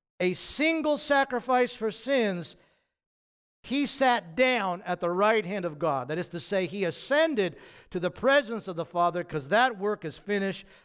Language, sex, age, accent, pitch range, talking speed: English, male, 50-69, American, 170-245 Hz, 170 wpm